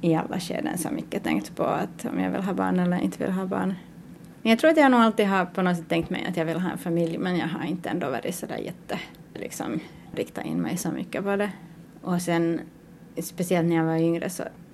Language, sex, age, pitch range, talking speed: Swedish, female, 30-49, 165-185 Hz, 250 wpm